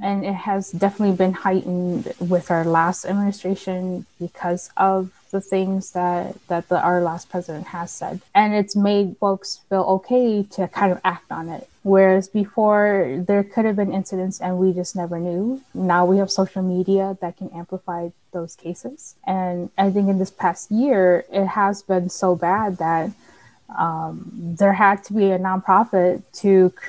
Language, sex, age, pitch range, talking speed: English, female, 20-39, 180-205 Hz, 170 wpm